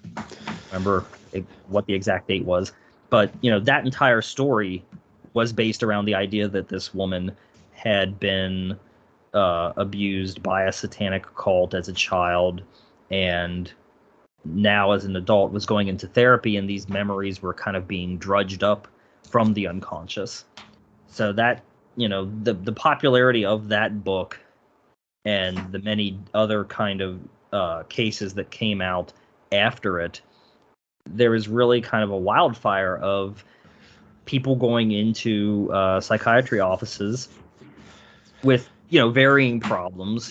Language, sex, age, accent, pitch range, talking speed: English, male, 30-49, American, 95-110 Hz, 140 wpm